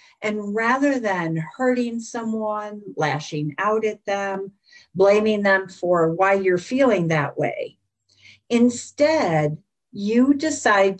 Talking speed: 110 wpm